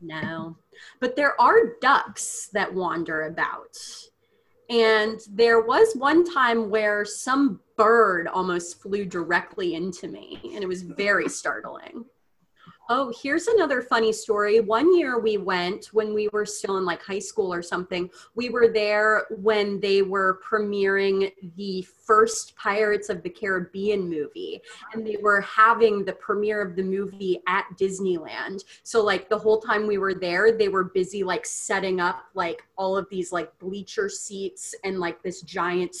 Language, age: English, 30-49